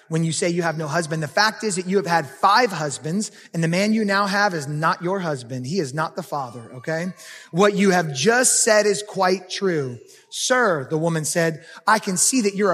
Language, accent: English, American